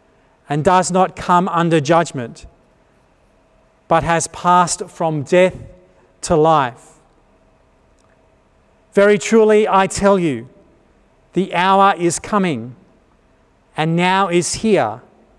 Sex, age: male, 50-69